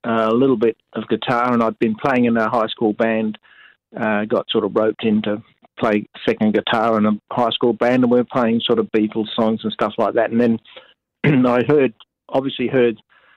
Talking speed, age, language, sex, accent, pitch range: 215 wpm, 50-69, English, male, Australian, 110-120 Hz